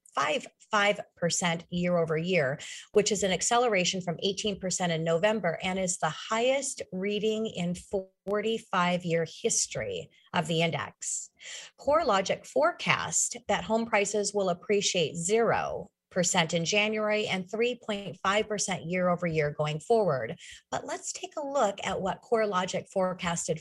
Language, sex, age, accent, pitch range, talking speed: English, female, 40-59, American, 165-210 Hz, 115 wpm